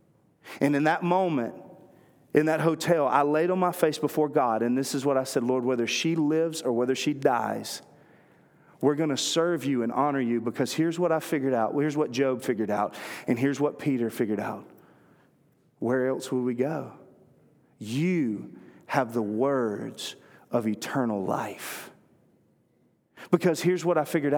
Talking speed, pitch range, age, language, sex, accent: 170 wpm, 135-175 Hz, 40-59, English, male, American